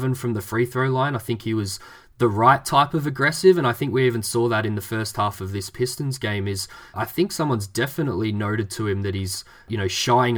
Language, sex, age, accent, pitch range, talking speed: English, male, 20-39, Australian, 100-125 Hz, 245 wpm